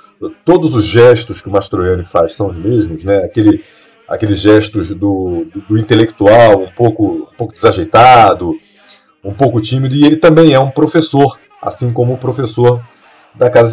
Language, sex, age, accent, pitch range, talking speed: Portuguese, male, 40-59, Brazilian, 115-160 Hz, 155 wpm